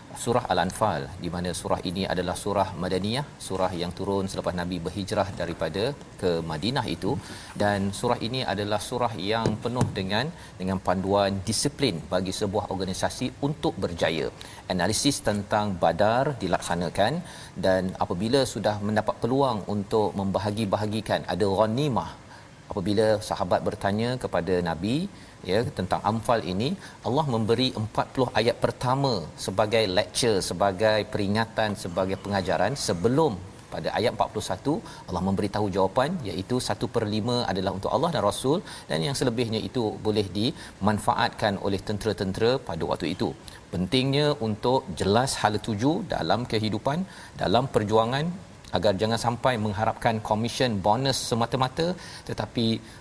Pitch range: 95-125 Hz